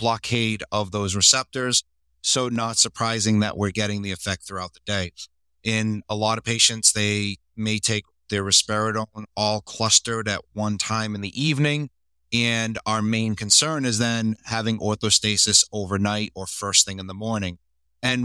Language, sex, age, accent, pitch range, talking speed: English, male, 30-49, American, 100-120 Hz, 160 wpm